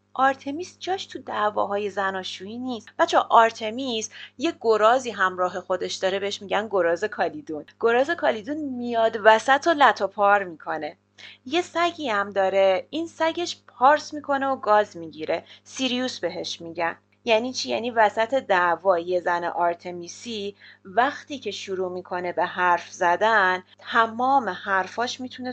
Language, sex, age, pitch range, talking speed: Persian, female, 30-49, 175-235 Hz, 130 wpm